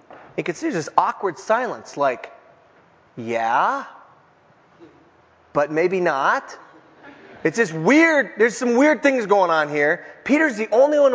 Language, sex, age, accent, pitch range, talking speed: English, male, 30-49, American, 185-275 Hz, 135 wpm